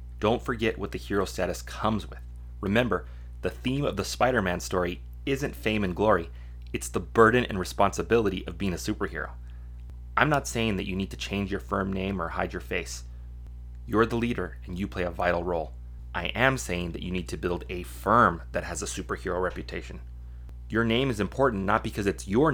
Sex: male